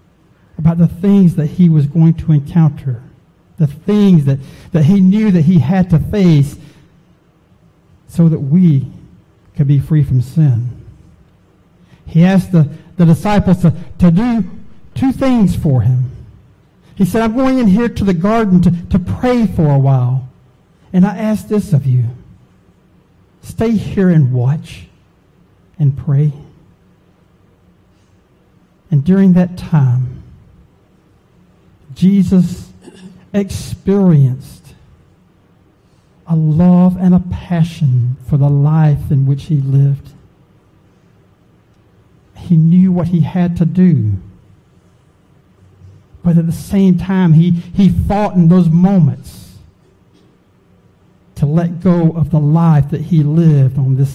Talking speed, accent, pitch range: 125 wpm, American, 135-185 Hz